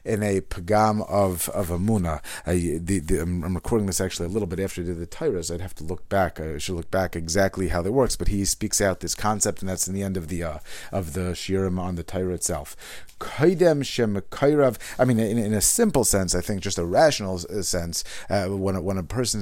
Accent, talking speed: American, 225 wpm